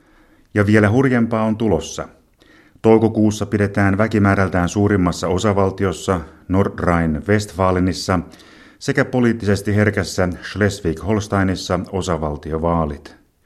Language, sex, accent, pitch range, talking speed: Finnish, male, native, 90-105 Hz, 75 wpm